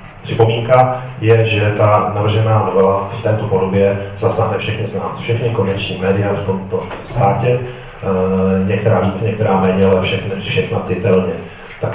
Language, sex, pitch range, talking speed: Czech, male, 95-115 Hz, 140 wpm